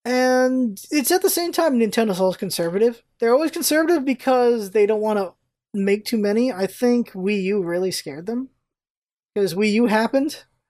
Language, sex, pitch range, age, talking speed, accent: English, male, 175-235 Hz, 20-39, 175 wpm, American